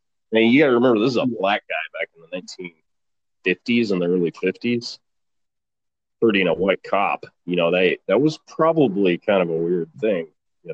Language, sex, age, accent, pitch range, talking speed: English, male, 30-49, American, 95-120 Hz, 190 wpm